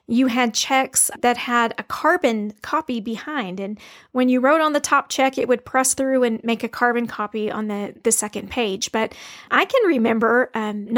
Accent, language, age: American, English, 40-59